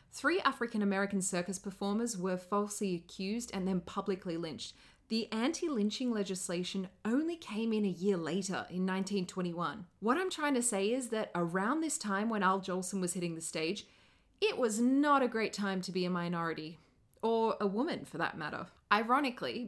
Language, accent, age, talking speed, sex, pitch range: English, Australian, 30-49, 170 wpm, female, 180-225 Hz